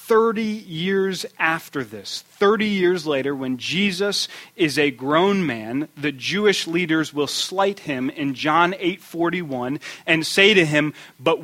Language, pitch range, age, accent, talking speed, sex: English, 140-175 Hz, 40-59, American, 150 wpm, male